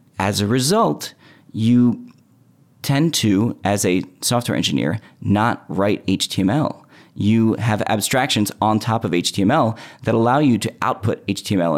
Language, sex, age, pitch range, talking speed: English, male, 30-49, 95-115 Hz, 135 wpm